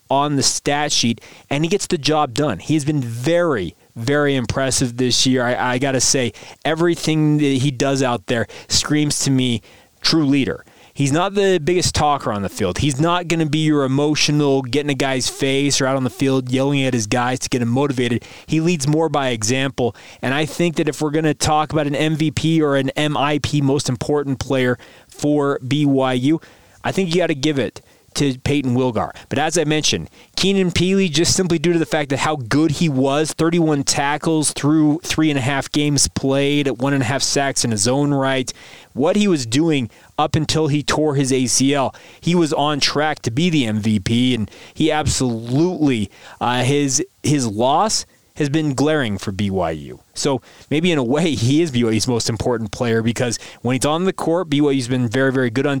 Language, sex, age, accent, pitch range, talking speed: English, male, 20-39, American, 125-155 Hz, 200 wpm